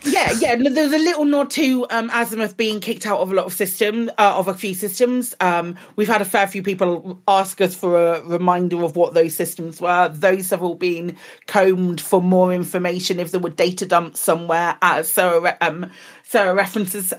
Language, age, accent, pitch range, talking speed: English, 40-59, British, 180-220 Hz, 195 wpm